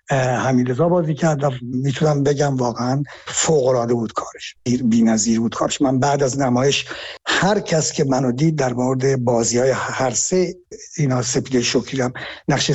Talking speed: 145 wpm